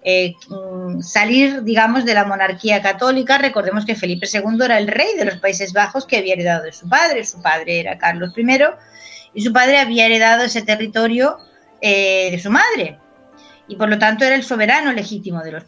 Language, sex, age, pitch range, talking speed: Spanish, female, 30-49, 185-235 Hz, 190 wpm